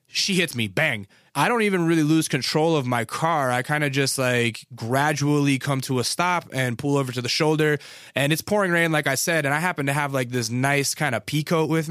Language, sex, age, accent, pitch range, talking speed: English, male, 20-39, American, 125-160 Hz, 240 wpm